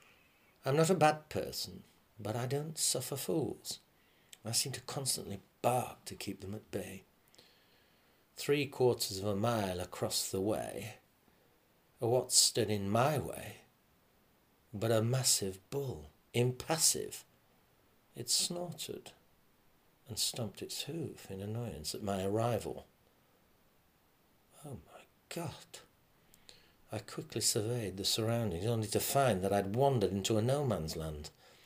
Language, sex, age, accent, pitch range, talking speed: English, male, 60-79, British, 100-130 Hz, 125 wpm